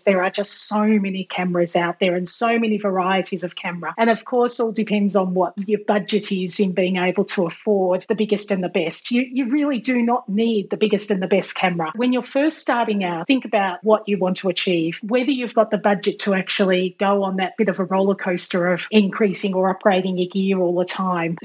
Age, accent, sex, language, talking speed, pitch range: 30-49, Australian, female, English, 230 wpm, 190-235 Hz